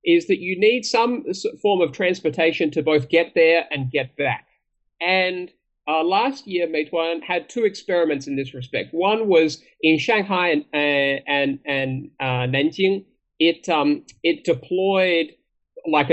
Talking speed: 150 wpm